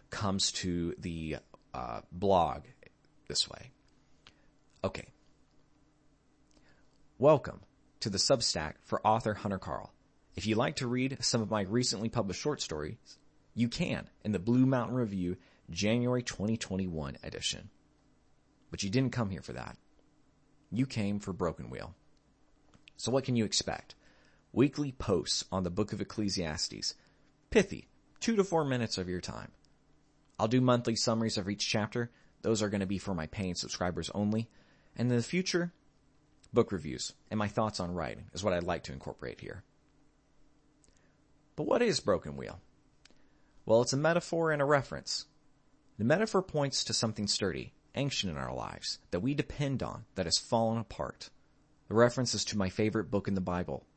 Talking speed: 160 wpm